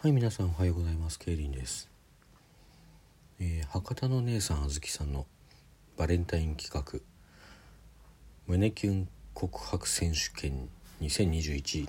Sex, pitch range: male, 75-100 Hz